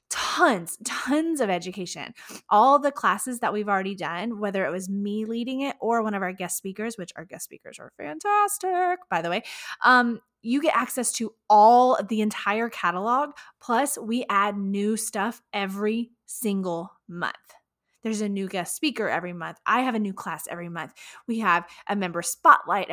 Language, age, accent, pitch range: English, 20-39, American, 190-240 Hz